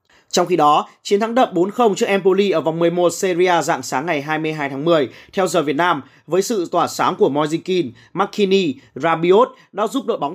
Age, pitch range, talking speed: 20-39, 165-210 Hz, 210 wpm